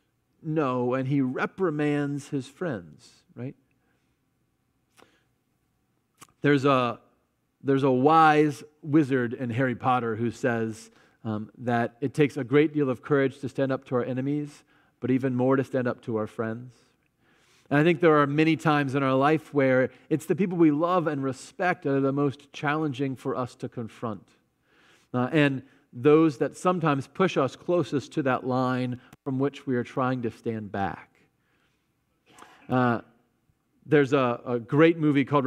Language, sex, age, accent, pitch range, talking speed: English, male, 40-59, American, 130-150 Hz, 160 wpm